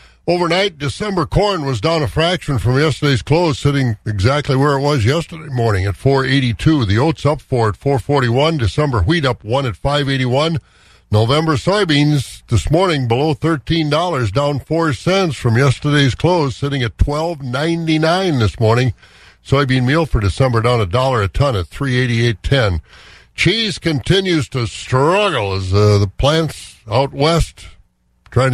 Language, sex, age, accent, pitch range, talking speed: English, male, 60-79, American, 115-150 Hz, 145 wpm